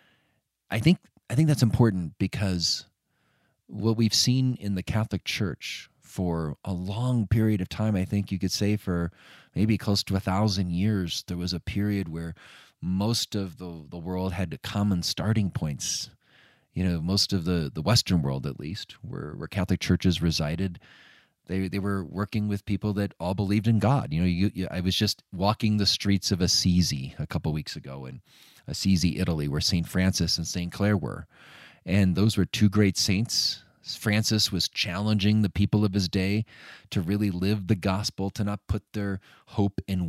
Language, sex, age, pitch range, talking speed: English, male, 30-49, 90-105 Hz, 185 wpm